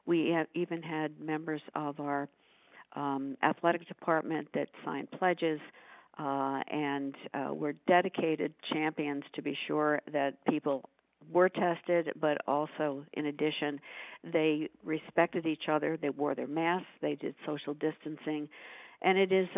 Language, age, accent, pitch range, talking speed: English, 50-69, American, 145-165 Hz, 140 wpm